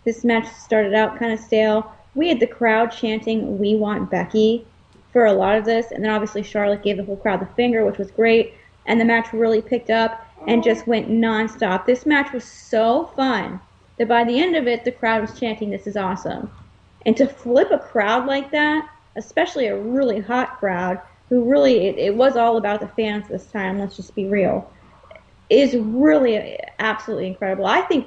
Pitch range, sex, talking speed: 210-245 Hz, female, 200 wpm